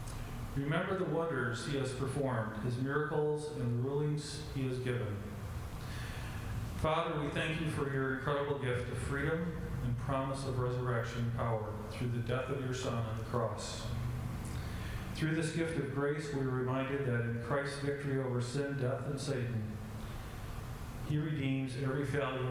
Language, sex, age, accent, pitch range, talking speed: English, male, 40-59, American, 115-140 Hz, 155 wpm